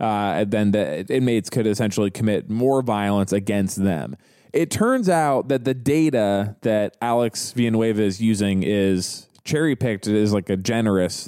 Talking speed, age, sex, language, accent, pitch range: 165 wpm, 20-39, male, English, American, 100-125 Hz